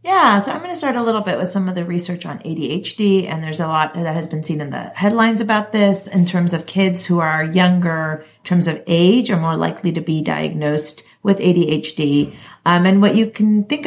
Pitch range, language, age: 150-185 Hz, English, 40-59